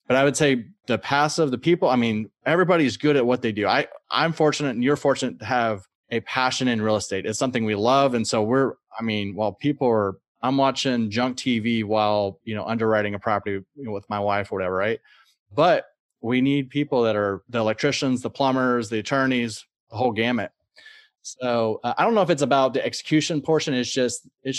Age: 30-49